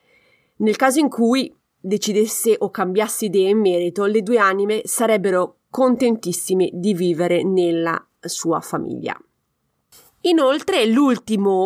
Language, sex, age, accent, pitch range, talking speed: Italian, female, 30-49, native, 195-255 Hz, 115 wpm